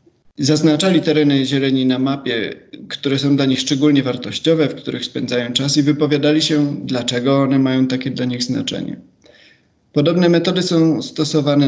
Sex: male